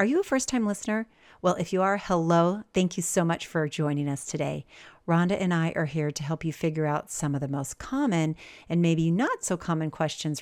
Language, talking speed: English, 225 wpm